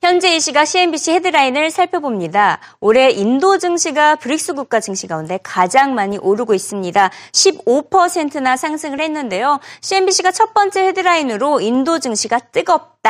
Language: Korean